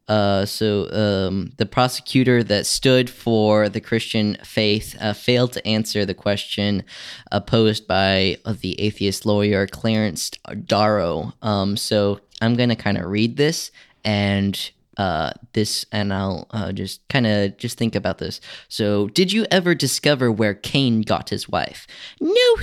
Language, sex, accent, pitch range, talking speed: English, male, American, 105-145 Hz, 155 wpm